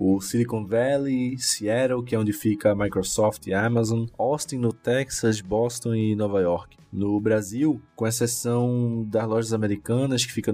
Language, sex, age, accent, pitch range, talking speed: Portuguese, male, 20-39, Brazilian, 105-125 Hz, 165 wpm